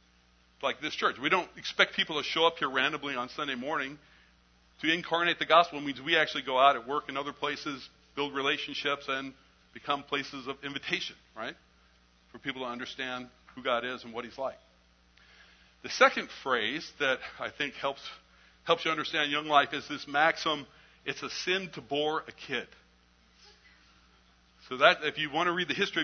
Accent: American